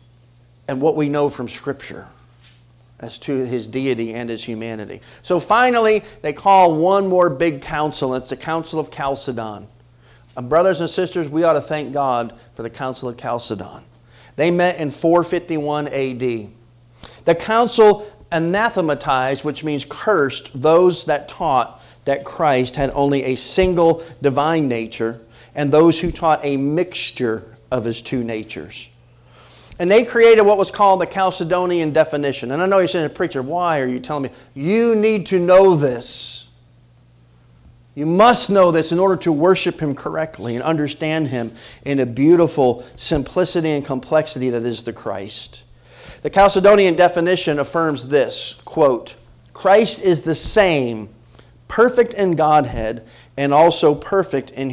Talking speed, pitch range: 150 wpm, 120-175 Hz